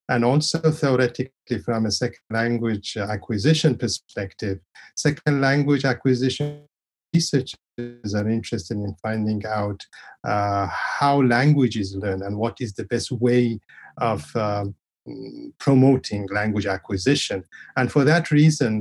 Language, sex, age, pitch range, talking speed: English, male, 50-69, 105-130 Hz, 120 wpm